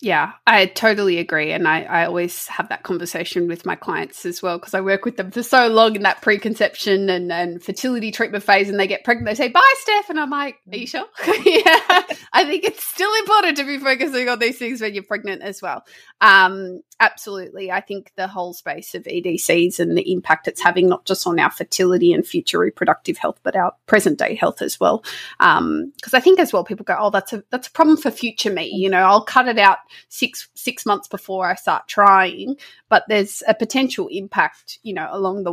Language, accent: English, Australian